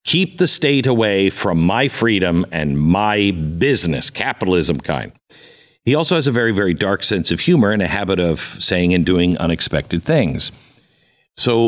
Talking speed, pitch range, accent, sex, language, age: 165 wpm, 95-120 Hz, American, male, English, 50-69